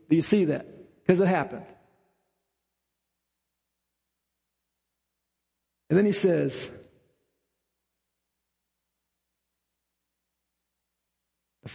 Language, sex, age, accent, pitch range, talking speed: English, male, 50-69, American, 150-210 Hz, 60 wpm